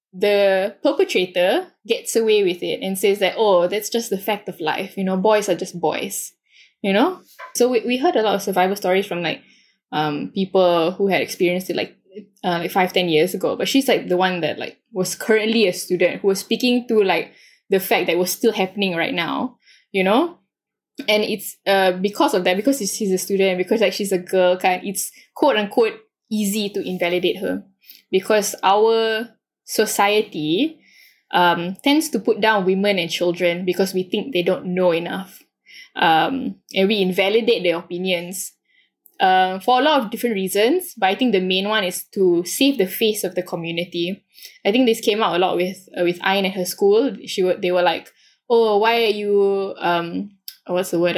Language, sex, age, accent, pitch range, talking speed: English, female, 10-29, Malaysian, 185-225 Hz, 195 wpm